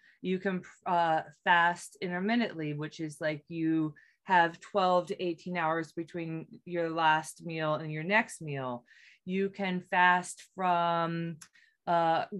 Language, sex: English, female